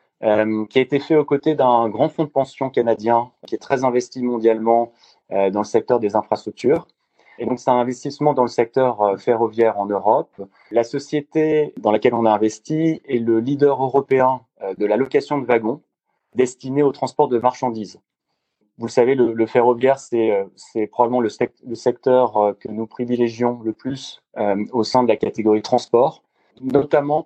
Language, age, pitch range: Italian, 30-49, 110-135 Hz